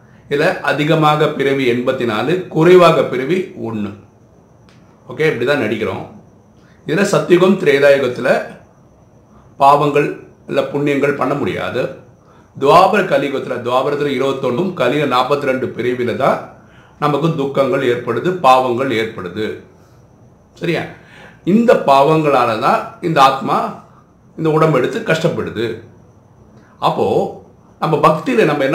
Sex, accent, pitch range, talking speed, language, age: male, native, 130-175 Hz, 100 wpm, Tamil, 50-69